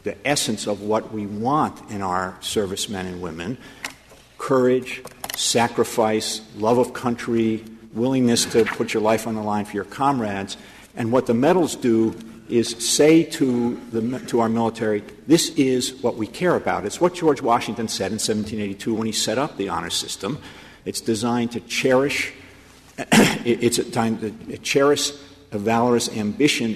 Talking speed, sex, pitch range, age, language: 165 wpm, male, 105-125 Hz, 50-69, English